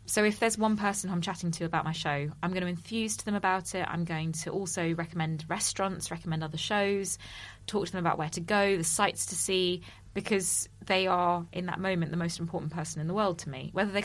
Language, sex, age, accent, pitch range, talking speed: English, female, 20-39, British, 160-190 Hz, 240 wpm